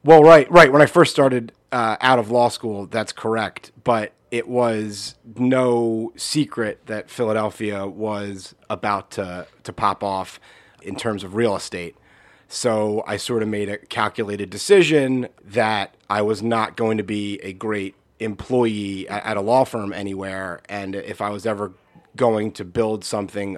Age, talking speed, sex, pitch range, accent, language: 30-49, 165 wpm, male, 95-115 Hz, American, English